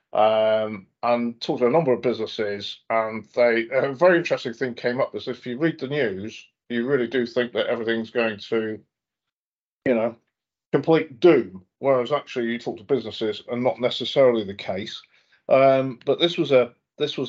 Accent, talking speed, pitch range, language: British, 180 wpm, 115-135 Hz, English